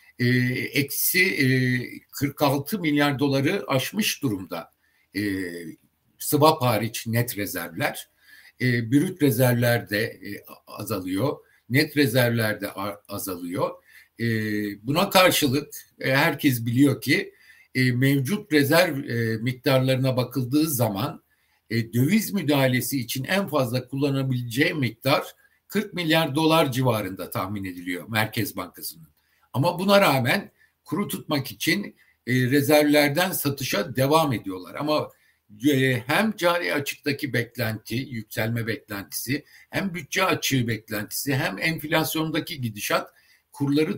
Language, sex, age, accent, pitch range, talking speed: Turkish, male, 60-79, native, 115-150 Hz, 105 wpm